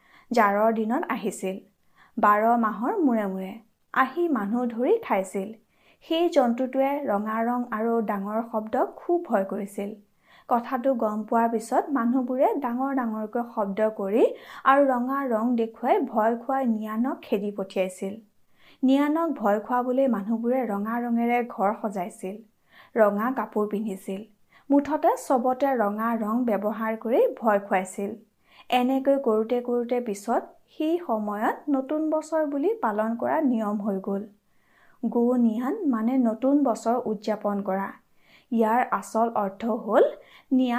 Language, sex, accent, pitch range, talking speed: Hindi, female, native, 215-260 Hz, 95 wpm